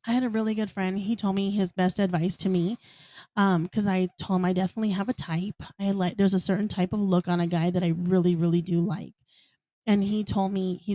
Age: 20-39